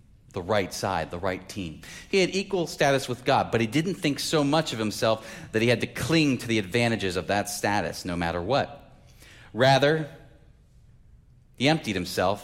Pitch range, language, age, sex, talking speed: 105-145 Hz, English, 30-49, male, 185 wpm